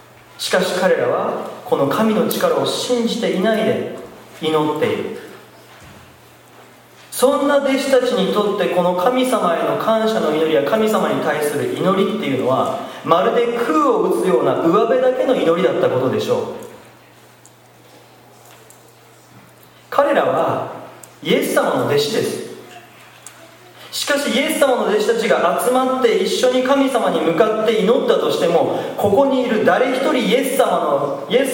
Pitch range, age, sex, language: 185-285 Hz, 40-59, male, Japanese